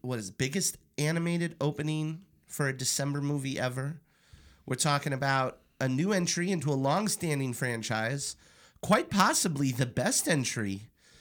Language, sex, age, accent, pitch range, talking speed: English, male, 30-49, American, 125-155 Hz, 135 wpm